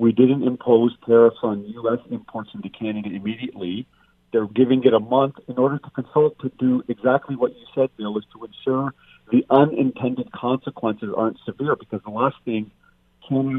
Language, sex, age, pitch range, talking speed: English, male, 40-59, 110-135 Hz, 170 wpm